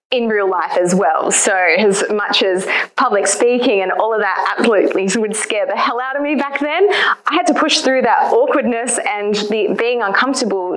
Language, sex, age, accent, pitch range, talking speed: English, female, 20-39, Australian, 195-260 Hz, 200 wpm